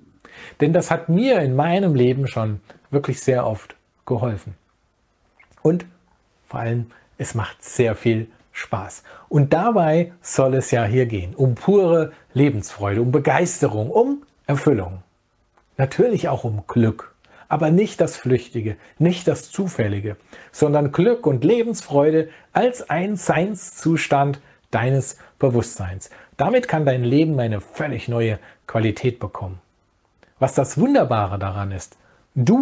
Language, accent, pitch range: German, German, 110-160 Hz